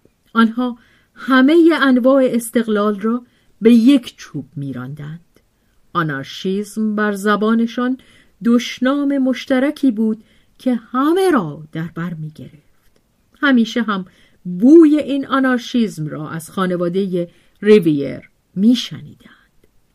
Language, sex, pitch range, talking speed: Persian, female, 160-245 Hz, 90 wpm